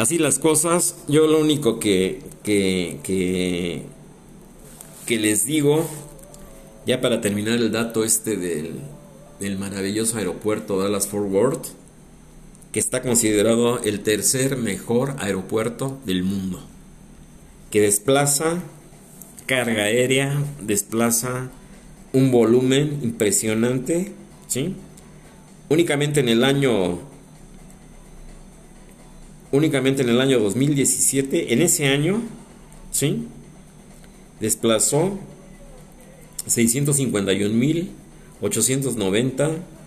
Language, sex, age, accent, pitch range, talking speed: Spanish, male, 50-69, Mexican, 105-160 Hz, 85 wpm